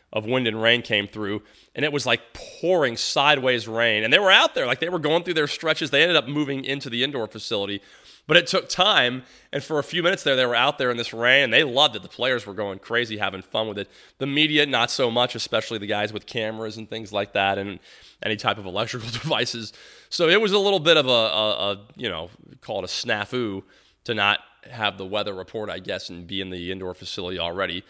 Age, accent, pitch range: 20-39, American, 100-135 Hz